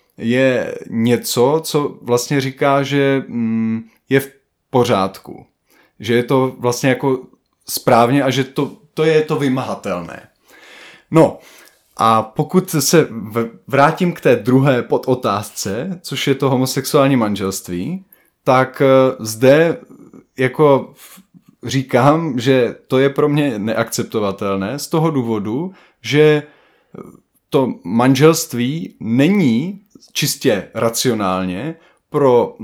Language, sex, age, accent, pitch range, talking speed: Czech, male, 20-39, native, 125-155 Hz, 105 wpm